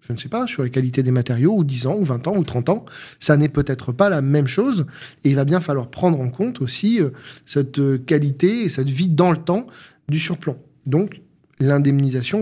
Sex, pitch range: male, 130-165 Hz